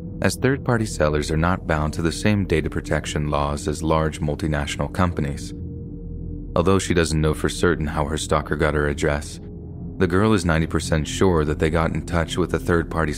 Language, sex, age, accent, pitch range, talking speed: English, male, 30-49, American, 75-85 Hz, 195 wpm